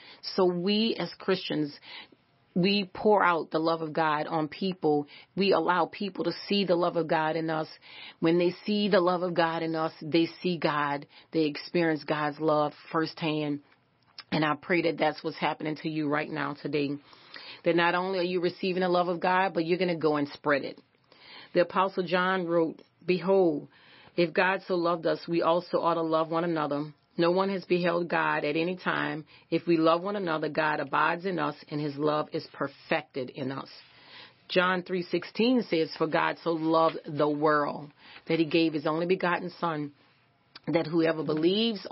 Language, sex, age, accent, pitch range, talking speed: English, female, 40-59, American, 155-180 Hz, 190 wpm